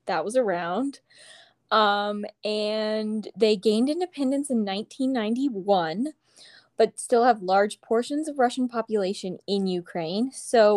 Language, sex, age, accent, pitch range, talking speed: English, female, 20-39, American, 205-260 Hz, 115 wpm